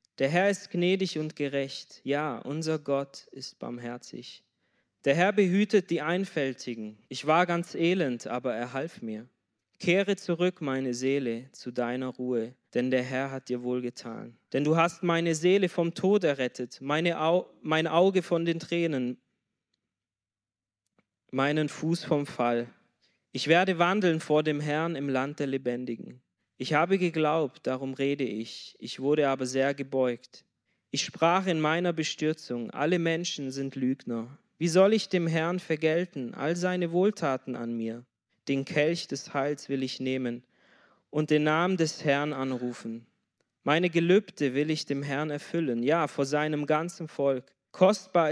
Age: 20-39